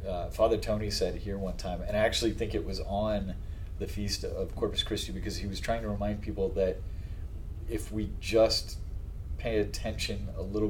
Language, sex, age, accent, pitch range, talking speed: English, male, 30-49, American, 90-110 Hz, 190 wpm